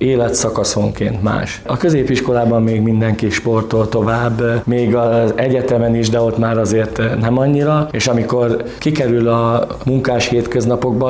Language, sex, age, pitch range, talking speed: Hungarian, male, 20-39, 115-125 Hz, 130 wpm